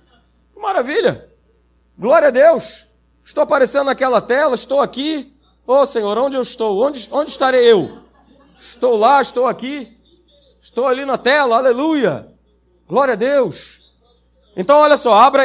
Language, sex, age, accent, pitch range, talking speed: Portuguese, male, 40-59, Brazilian, 195-270 Hz, 140 wpm